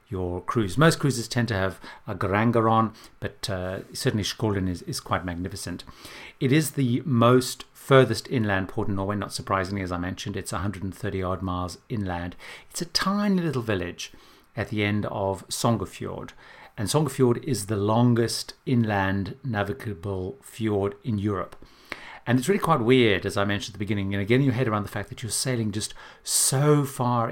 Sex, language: male, English